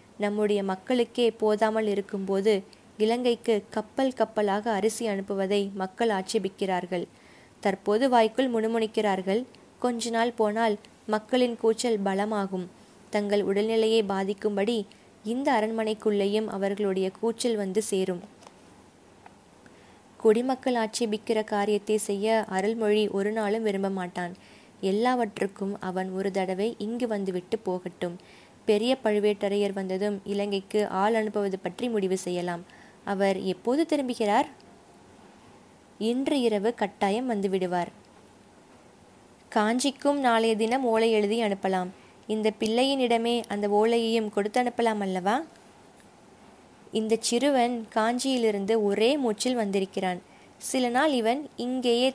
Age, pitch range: 20-39, 200-230 Hz